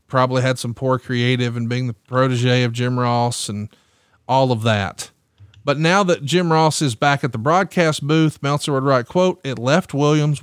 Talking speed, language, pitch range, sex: 195 wpm, English, 115-145 Hz, male